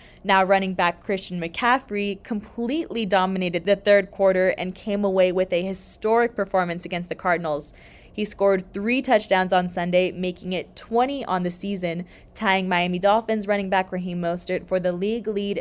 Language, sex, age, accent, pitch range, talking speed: English, female, 20-39, American, 175-200 Hz, 165 wpm